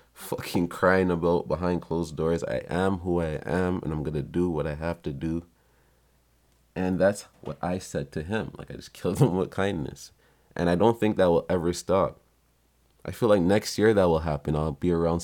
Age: 20-39